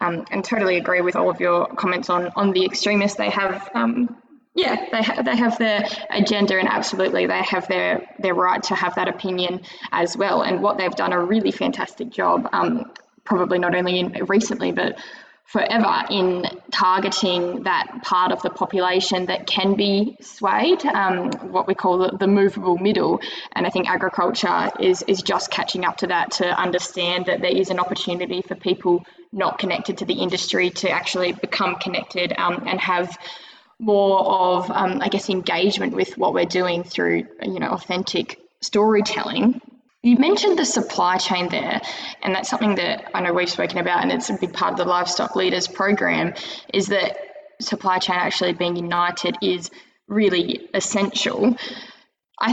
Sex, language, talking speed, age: female, English, 175 wpm, 10-29